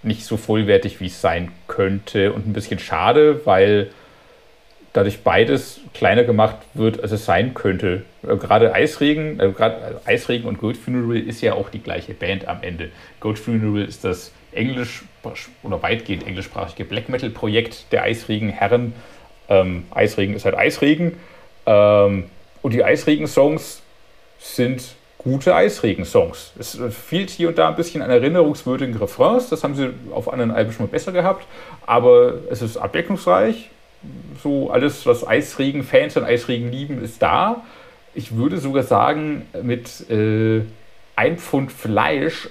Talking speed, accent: 150 wpm, German